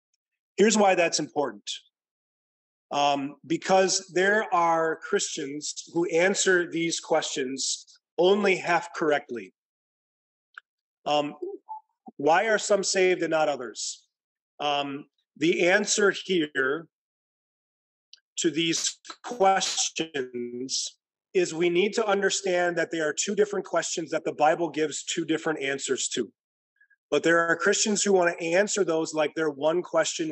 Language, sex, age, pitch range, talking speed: English, male, 30-49, 160-210 Hz, 125 wpm